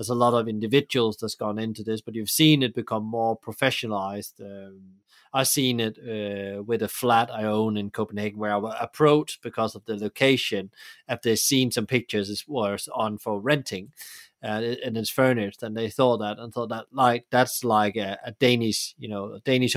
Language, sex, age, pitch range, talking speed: English, male, 30-49, 110-130 Hz, 195 wpm